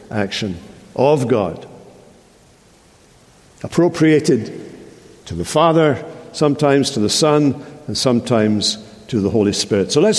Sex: male